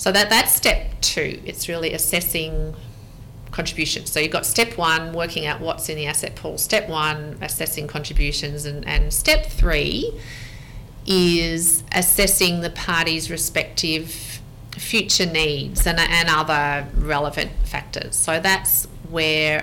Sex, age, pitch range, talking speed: female, 40-59, 145-165 Hz, 135 wpm